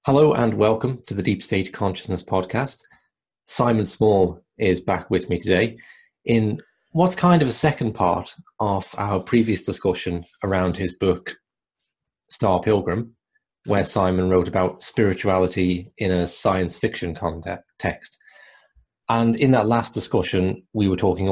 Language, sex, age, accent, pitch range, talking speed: English, male, 30-49, British, 90-110 Hz, 140 wpm